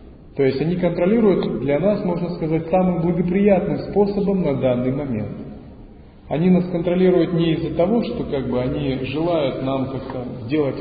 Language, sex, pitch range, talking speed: Russian, male, 130-170 Hz, 140 wpm